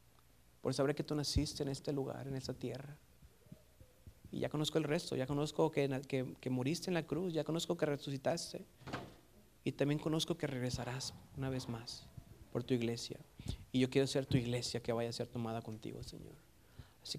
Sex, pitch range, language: male, 120-145 Hz, Spanish